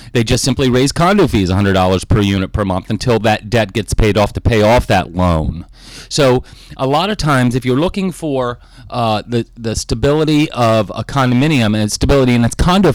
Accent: American